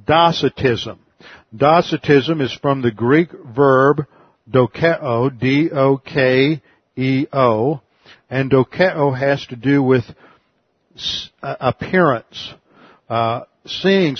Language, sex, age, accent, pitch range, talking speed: English, male, 50-69, American, 125-155 Hz, 75 wpm